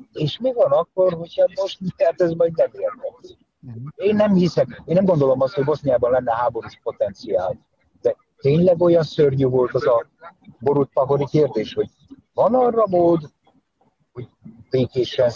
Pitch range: 125-190 Hz